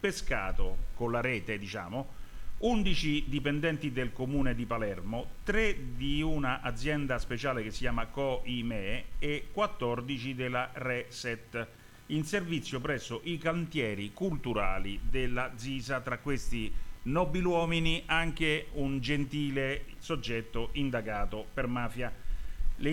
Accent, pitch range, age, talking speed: native, 115-145 Hz, 40-59, 115 wpm